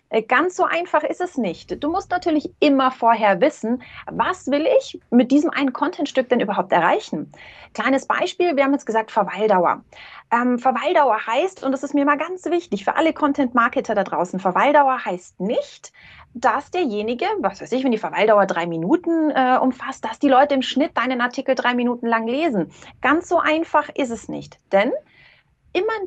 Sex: female